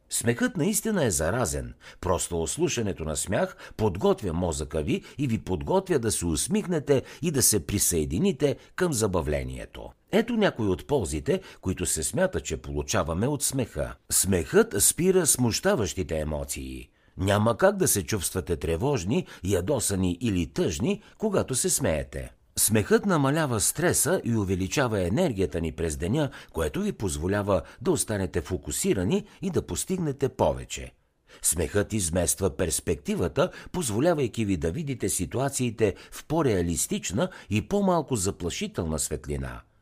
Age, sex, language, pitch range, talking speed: 60-79, male, Bulgarian, 80-135 Hz, 125 wpm